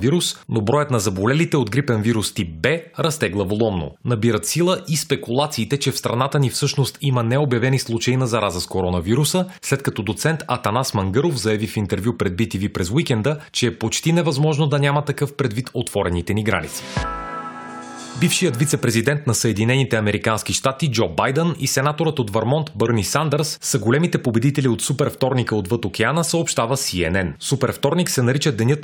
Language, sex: Bulgarian, male